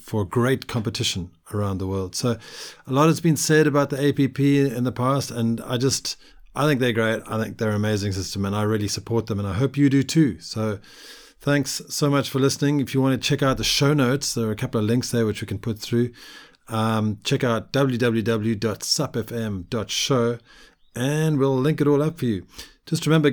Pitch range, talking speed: 110-145 Hz, 215 wpm